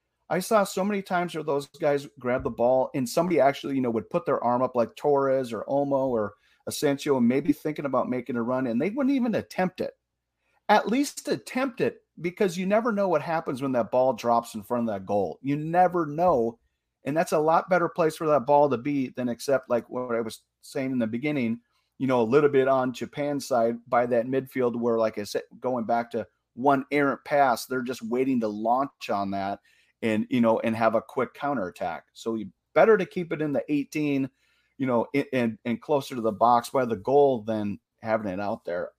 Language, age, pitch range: English, 30-49, 110-145 Hz